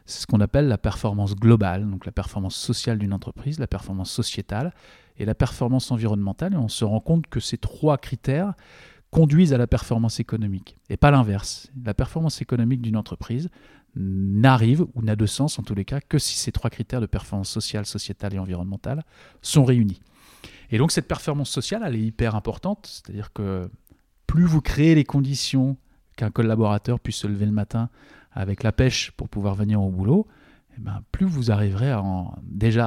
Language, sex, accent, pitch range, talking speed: French, male, French, 100-130 Hz, 190 wpm